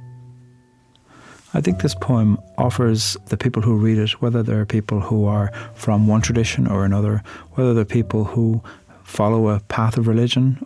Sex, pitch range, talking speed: male, 105-125 Hz, 165 wpm